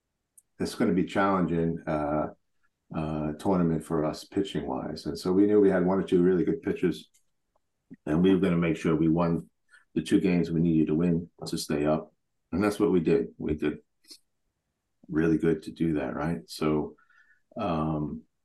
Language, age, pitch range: English, 50-69, 80-100 Hz